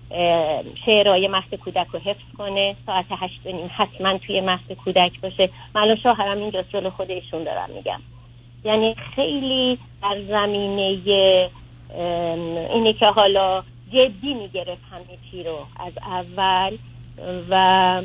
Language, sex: Persian, female